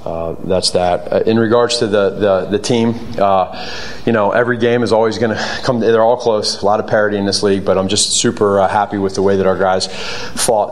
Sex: male